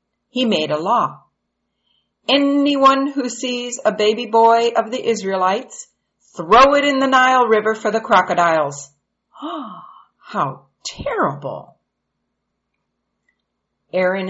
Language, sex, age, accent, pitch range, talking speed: English, female, 50-69, American, 160-245 Hz, 110 wpm